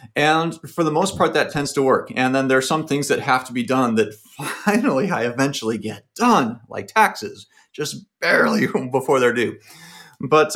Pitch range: 120-150 Hz